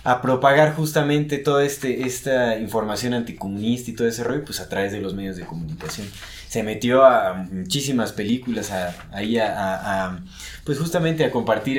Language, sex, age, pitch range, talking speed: Spanish, male, 20-39, 105-150 Hz, 175 wpm